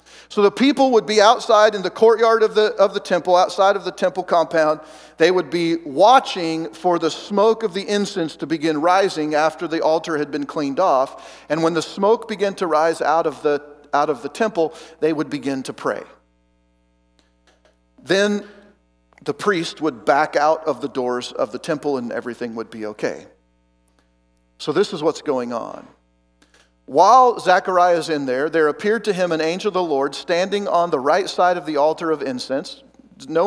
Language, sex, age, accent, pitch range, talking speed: English, male, 50-69, American, 145-200 Hz, 190 wpm